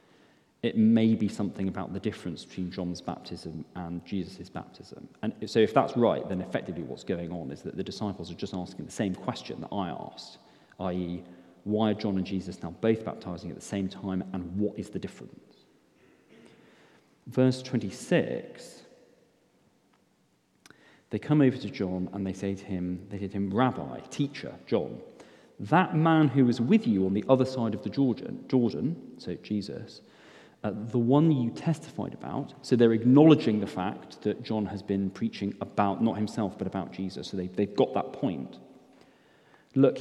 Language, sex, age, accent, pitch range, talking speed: English, male, 40-59, British, 95-120 Hz, 175 wpm